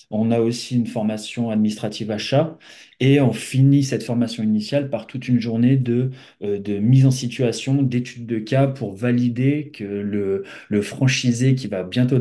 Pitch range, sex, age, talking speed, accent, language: 105-130 Hz, male, 30-49, 165 wpm, French, French